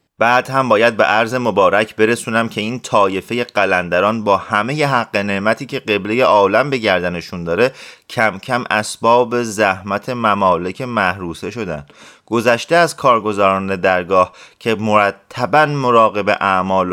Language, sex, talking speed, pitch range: Persian, male, 130 wpm, 105-145 Hz